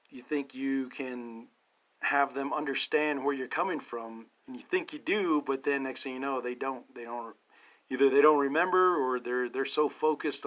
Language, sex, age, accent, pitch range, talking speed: English, male, 40-59, American, 125-145 Hz, 200 wpm